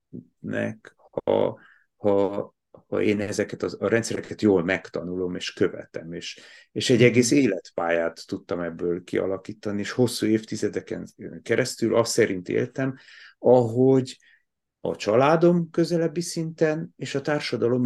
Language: Hungarian